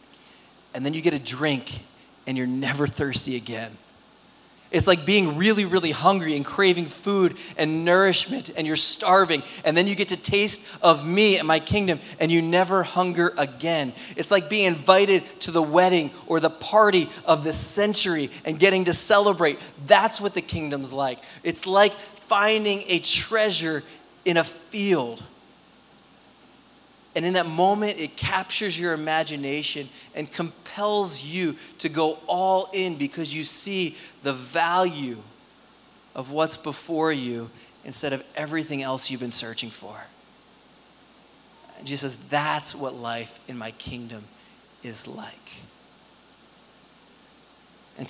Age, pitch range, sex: 20-39, 140-185 Hz, male